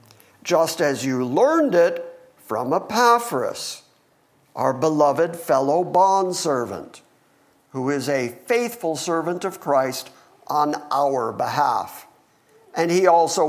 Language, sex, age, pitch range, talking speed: English, male, 50-69, 150-205 Hz, 105 wpm